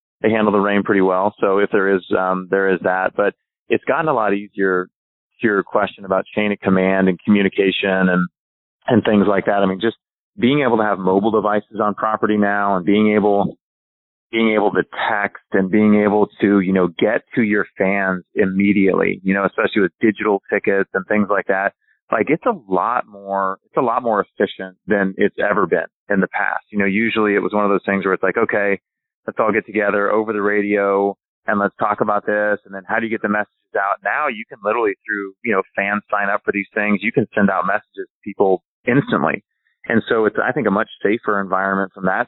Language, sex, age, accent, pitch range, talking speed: English, male, 30-49, American, 95-105 Hz, 225 wpm